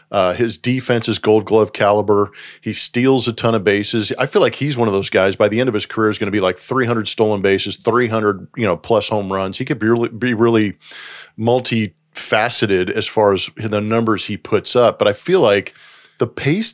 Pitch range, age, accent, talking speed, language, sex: 105-135 Hz, 40-59, American, 220 wpm, English, male